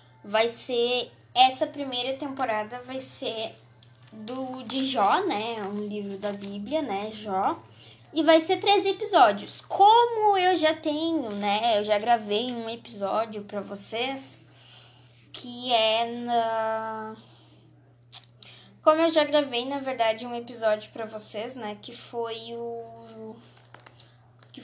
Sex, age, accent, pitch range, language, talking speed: female, 10-29, Brazilian, 210-280 Hz, Portuguese, 125 wpm